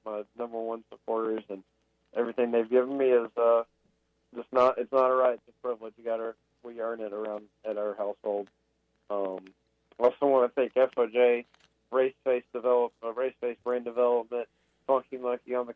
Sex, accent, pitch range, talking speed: male, American, 110-125 Hz, 180 wpm